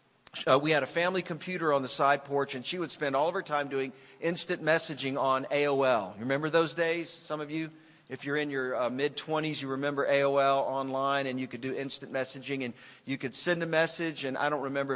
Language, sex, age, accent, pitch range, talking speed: English, male, 40-59, American, 135-170 Hz, 230 wpm